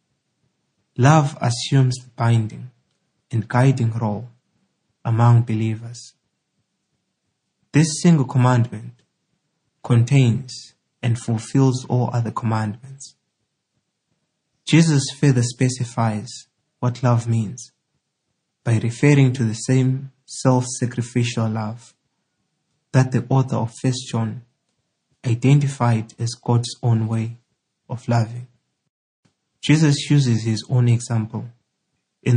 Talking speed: 95 wpm